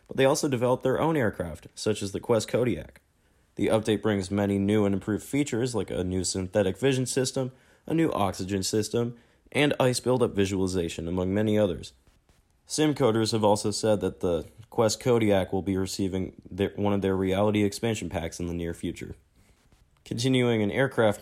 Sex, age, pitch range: male, 20-39, 95-120 Hz